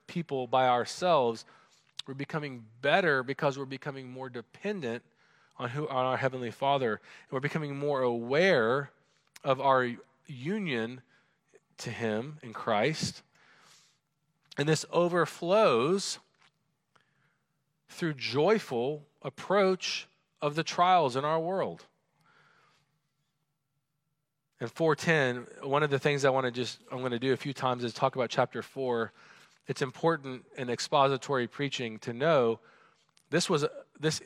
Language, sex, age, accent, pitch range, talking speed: English, male, 40-59, American, 125-150 Hz, 125 wpm